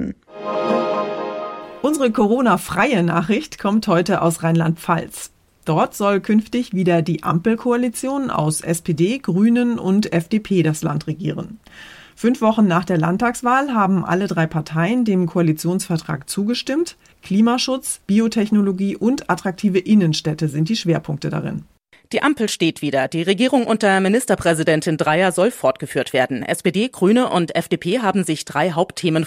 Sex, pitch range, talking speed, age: female, 160-210 Hz, 125 wpm, 30-49